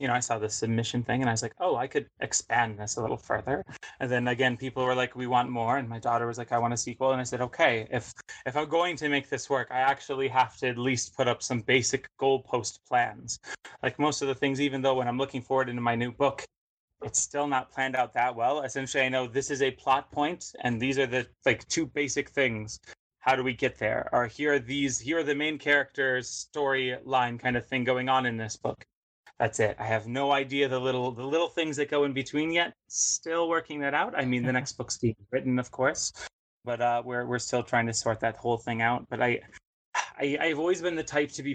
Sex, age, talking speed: male, 20-39, 250 wpm